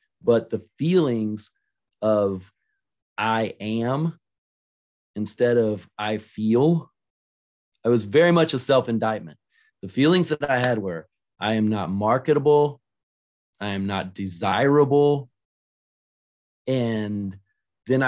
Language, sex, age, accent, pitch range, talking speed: English, male, 30-49, American, 100-125 Hz, 105 wpm